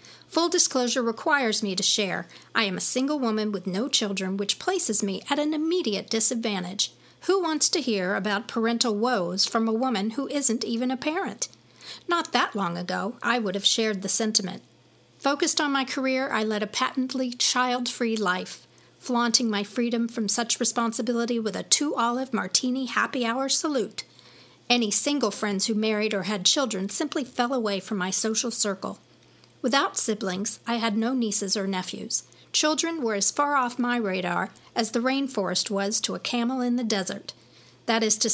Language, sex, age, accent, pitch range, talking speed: English, female, 50-69, American, 205-255 Hz, 175 wpm